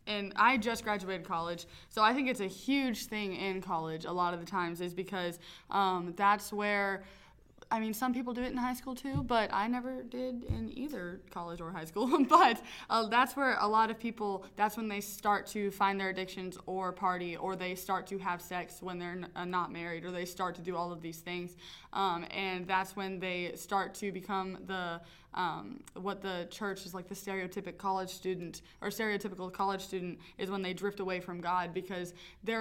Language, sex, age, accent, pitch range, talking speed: English, female, 20-39, American, 175-205 Hz, 210 wpm